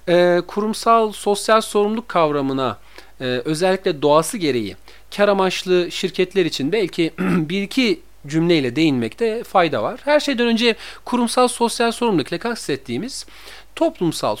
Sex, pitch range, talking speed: male, 165-245 Hz, 110 wpm